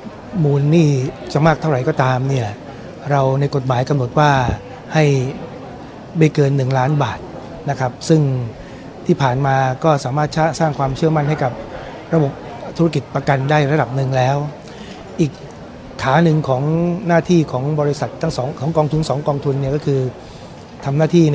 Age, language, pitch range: 60-79, Thai, 130-155 Hz